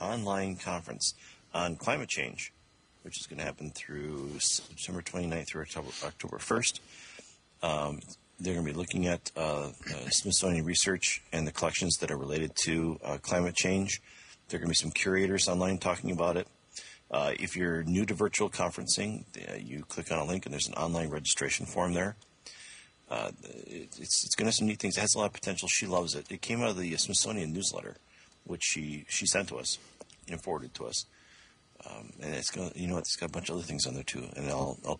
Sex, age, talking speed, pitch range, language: male, 40-59, 210 wpm, 75-95 Hz, English